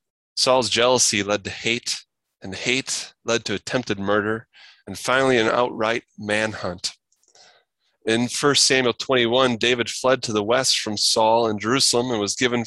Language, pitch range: English, 105-130 Hz